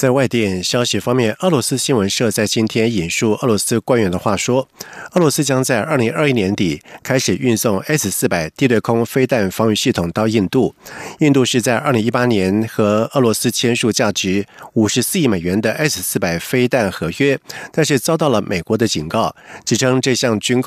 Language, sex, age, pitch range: German, male, 50-69, 105-135 Hz